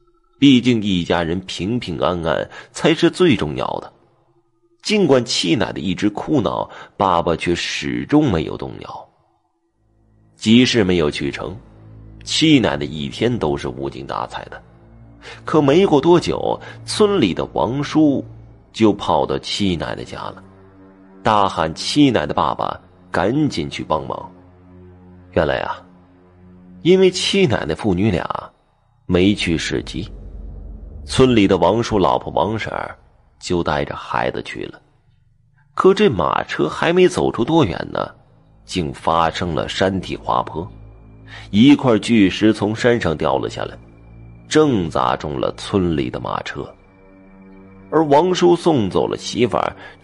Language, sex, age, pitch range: Chinese, male, 30-49, 90-125 Hz